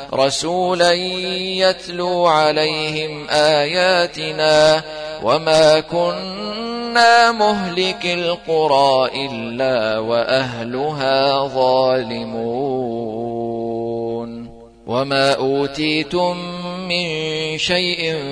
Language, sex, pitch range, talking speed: Arabic, male, 135-175 Hz, 50 wpm